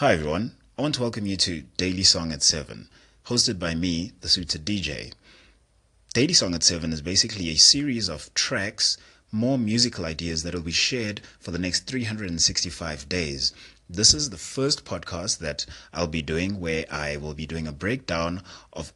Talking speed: 180 wpm